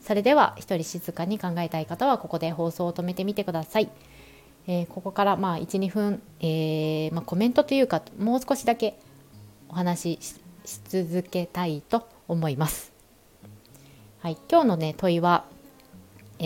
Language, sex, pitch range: Japanese, female, 155-215 Hz